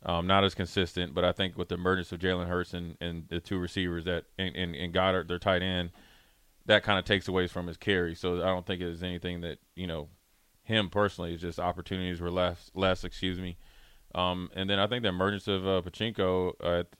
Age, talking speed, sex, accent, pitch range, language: 30-49, 230 wpm, male, American, 90-100 Hz, English